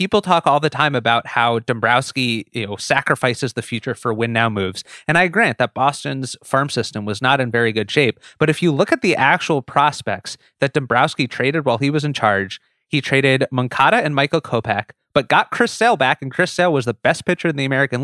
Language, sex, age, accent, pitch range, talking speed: English, male, 30-49, American, 120-160 Hz, 215 wpm